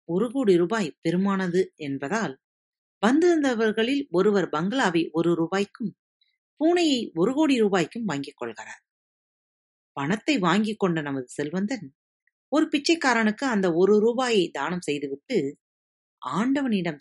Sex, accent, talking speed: female, native, 100 wpm